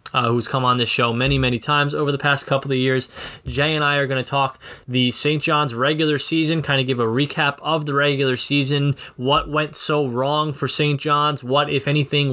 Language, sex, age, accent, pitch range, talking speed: English, male, 20-39, American, 130-150 Hz, 225 wpm